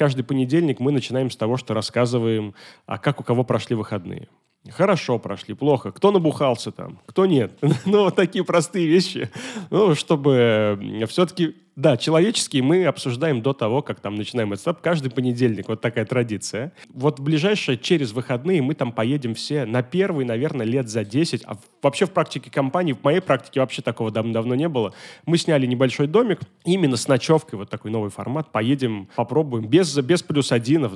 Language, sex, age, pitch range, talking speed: Russian, male, 30-49, 120-165 Hz, 170 wpm